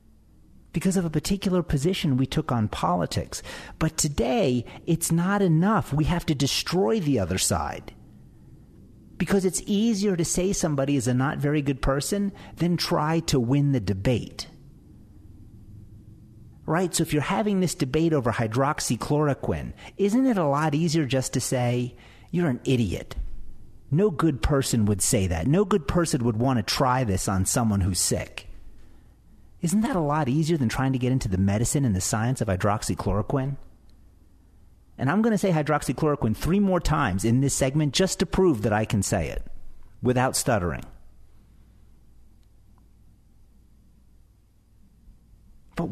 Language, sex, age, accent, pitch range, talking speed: English, male, 50-69, American, 105-175 Hz, 155 wpm